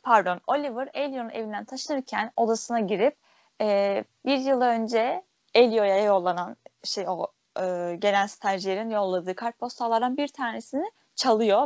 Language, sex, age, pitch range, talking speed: Turkish, female, 10-29, 195-260 Hz, 115 wpm